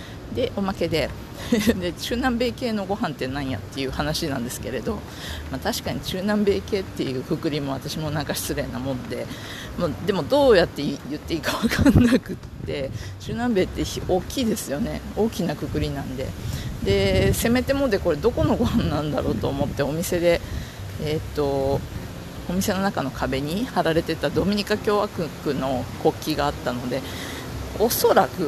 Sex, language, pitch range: female, Japanese, 135-200 Hz